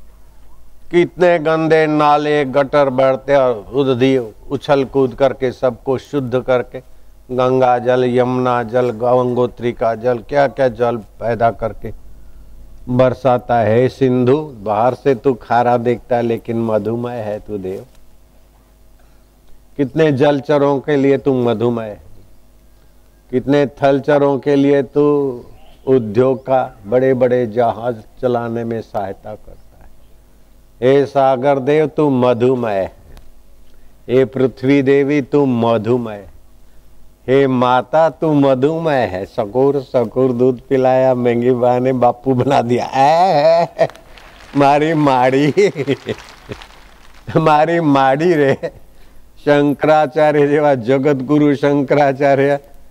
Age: 50-69